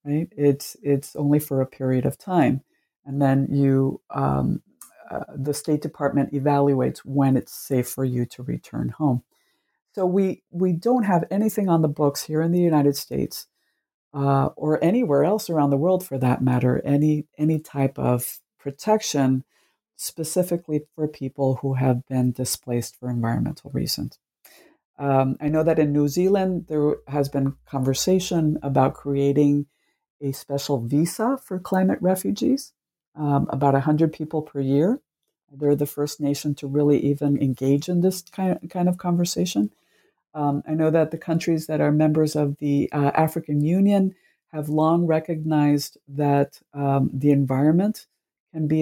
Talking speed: 155 wpm